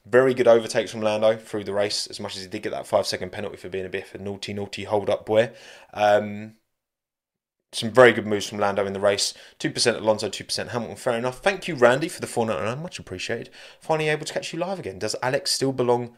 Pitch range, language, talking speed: 100-130 Hz, English, 230 wpm